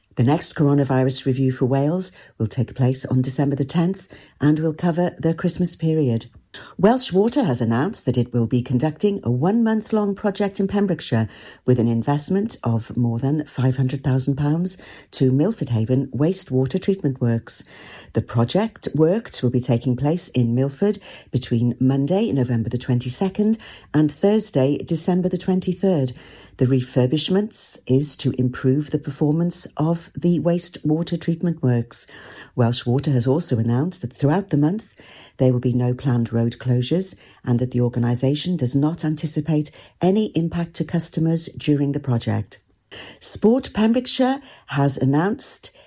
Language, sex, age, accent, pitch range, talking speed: English, female, 50-69, British, 125-175 Hz, 145 wpm